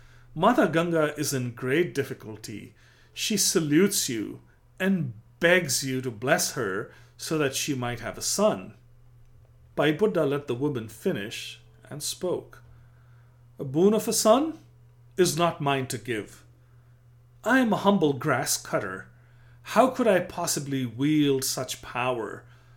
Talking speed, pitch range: 140 wpm, 120-150 Hz